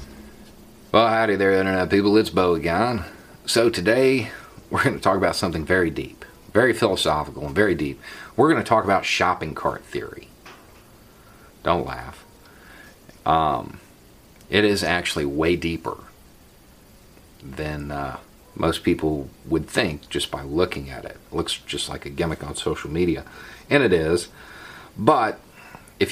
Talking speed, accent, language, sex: 145 wpm, American, English, male